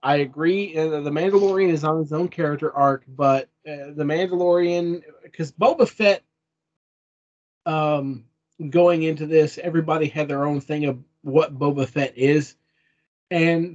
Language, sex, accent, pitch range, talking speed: English, male, American, 135-170 Hz, 140 wpm